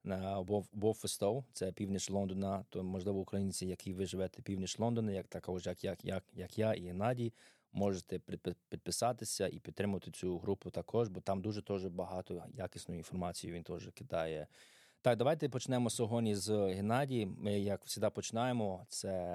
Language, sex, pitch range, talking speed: Ukrainian, male, 95-110 Hz, 155 wpm